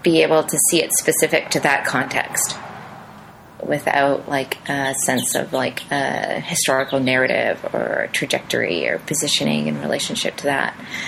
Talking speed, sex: 140 wpm, female